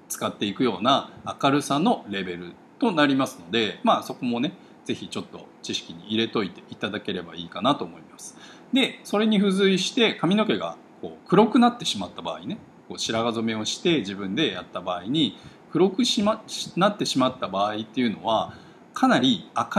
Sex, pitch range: male, 120-200 Hz